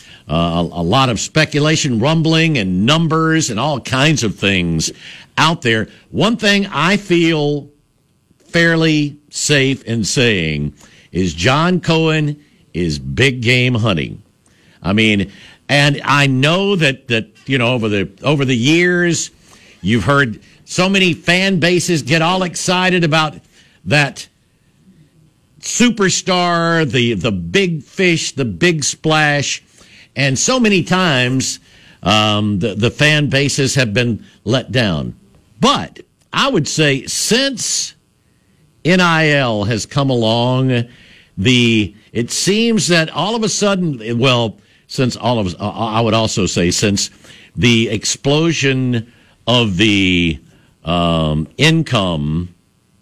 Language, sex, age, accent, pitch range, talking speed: English, male, 60-79, American, 110-160 Hz, 125 wpm